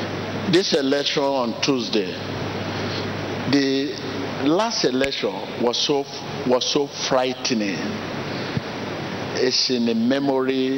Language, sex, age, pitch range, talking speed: English, male, 60-79, 125-150 Hz, 90 wpm